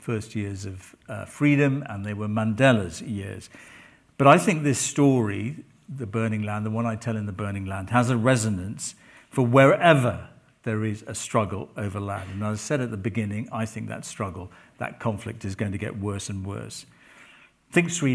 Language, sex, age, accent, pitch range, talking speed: English, male, 50-69, British, 105-130 Hz, 195 wpm